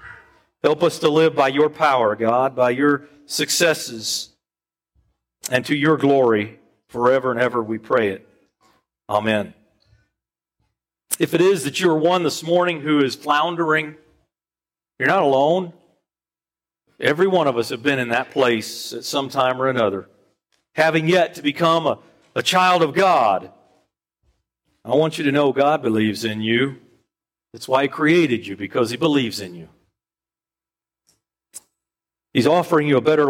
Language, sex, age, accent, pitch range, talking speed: English, male, 50-69, American, 115-155 Hz, 150 wpm